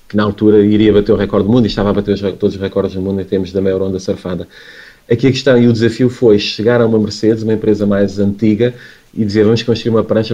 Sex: male